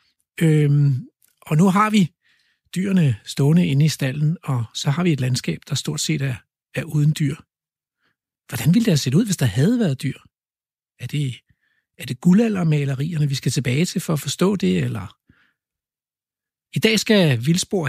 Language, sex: Danish, male